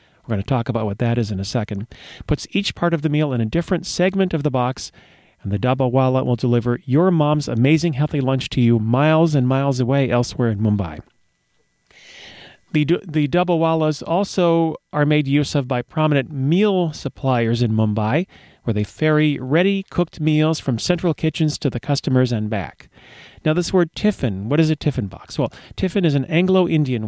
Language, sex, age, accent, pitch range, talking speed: English, male, 40-59, American, 120-160 Hz, 190 wpm